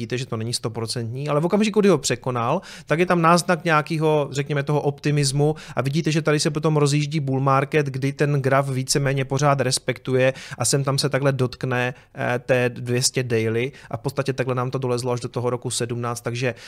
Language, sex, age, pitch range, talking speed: Czech, male, 30-49, 130-155 Hz, 205 wpm